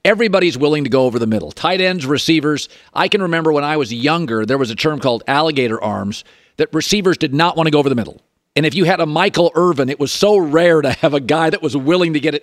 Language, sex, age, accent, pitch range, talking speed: English, male, 50-69, American, 135-180 Hz, 260 wpm